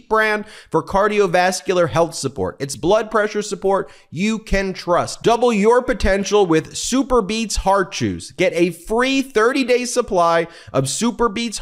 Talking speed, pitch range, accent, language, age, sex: 145 wpm, 150-200 Hz, American, English, 30-49, male